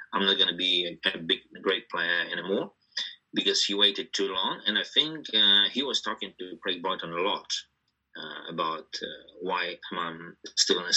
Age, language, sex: 30-49, English, male